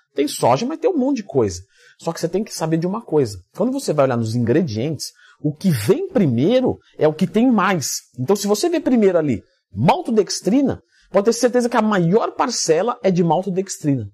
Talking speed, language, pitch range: 210 wpm, Portuguese, 145-235 Hz